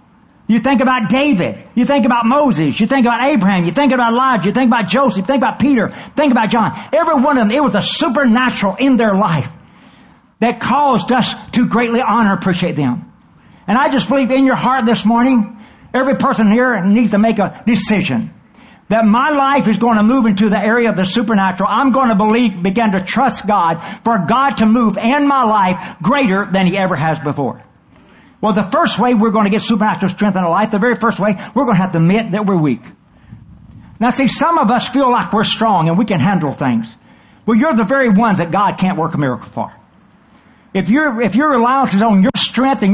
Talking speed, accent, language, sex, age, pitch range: 220 wpm, American, English, male, 60-79, 195-255 Hz